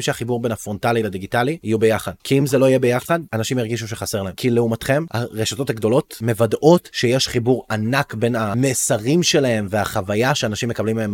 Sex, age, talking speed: male, 20-39, 165 wpm